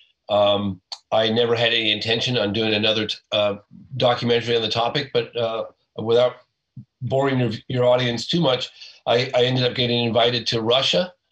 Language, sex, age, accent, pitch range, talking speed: English, male, 40-59, American, 105-130 Hz, 170 wpm